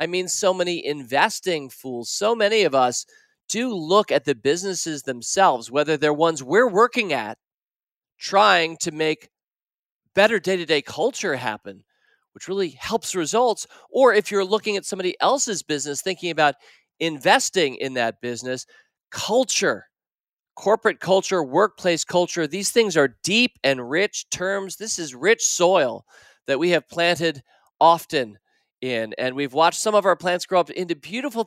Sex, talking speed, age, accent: male, 150 wpm, 40-59, American